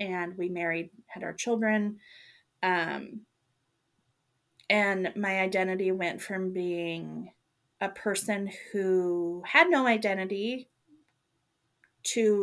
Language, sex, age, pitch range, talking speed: English, female, 30-49, 180-230 Hz, 95 wpm